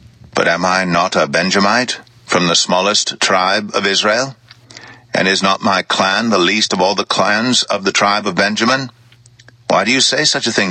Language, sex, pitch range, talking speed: English, male, 95-120 Hz, 195 wpm